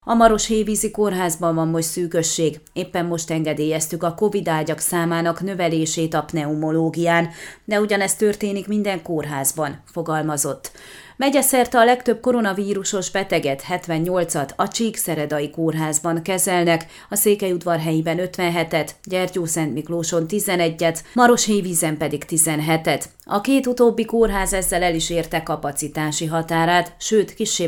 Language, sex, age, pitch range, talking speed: Hungarian, female, 30-49, 165-200 Hz, 120 wpm